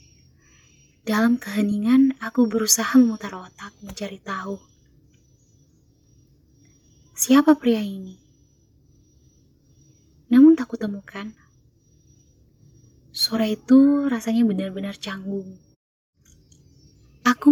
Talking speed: 70 wpm